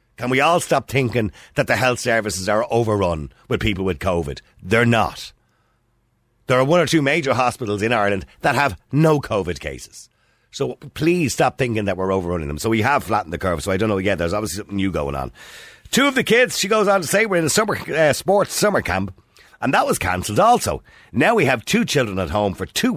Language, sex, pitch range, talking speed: English, male, 95-140 Hz, 230 wpm